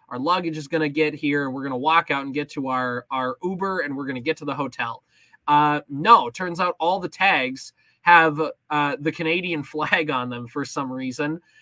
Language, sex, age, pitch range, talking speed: English, male, 20-39, 145-180 Hz, 220 wpm